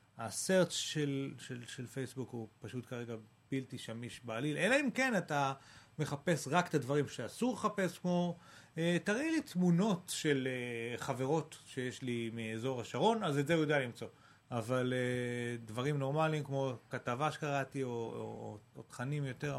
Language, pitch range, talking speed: Hebrew, 120-165 Hz, 160 wpm